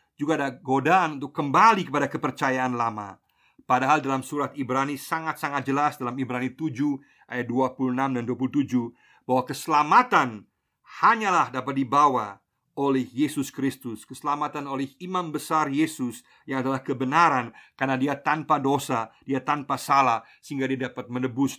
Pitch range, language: 125-150 Hz, Indonesian